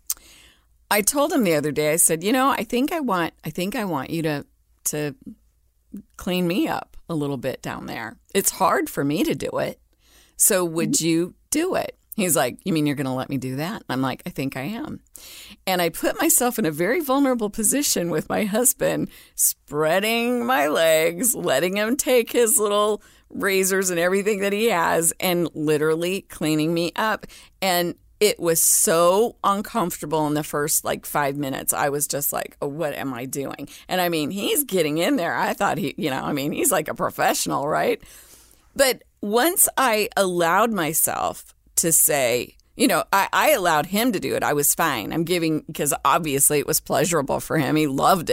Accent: American